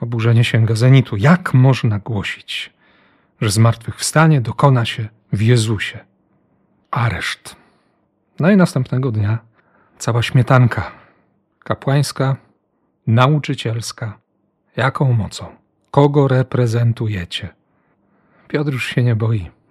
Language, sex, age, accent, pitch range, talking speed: Polish, male, 40-59, native, 115-150 Hz, 90 wpm